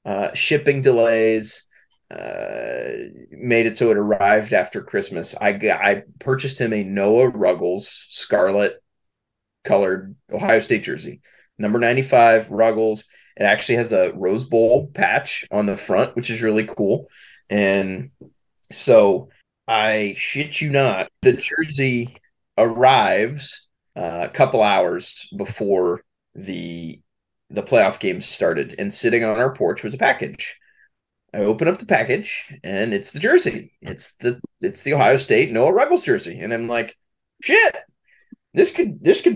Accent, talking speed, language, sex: American, 140 wpm, English, male